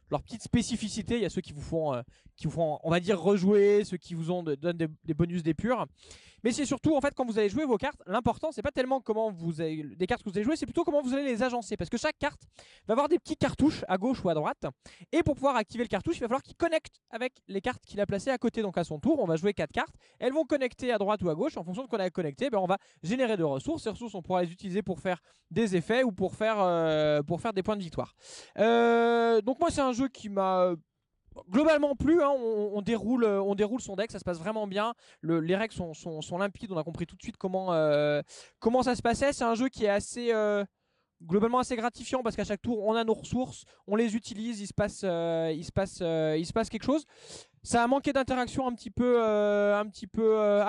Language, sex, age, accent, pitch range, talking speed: French, male, 20-39, French, 175-240 Hz, 265 wpm